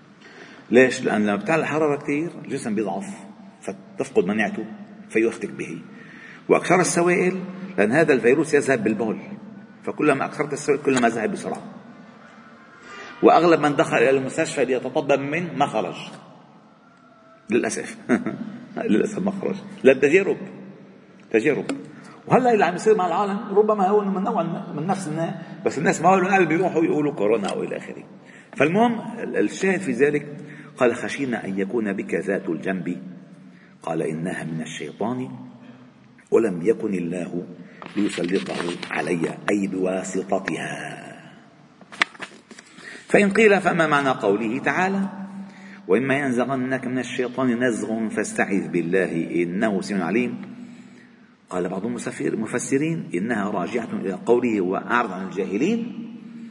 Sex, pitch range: male, 130-215 Hz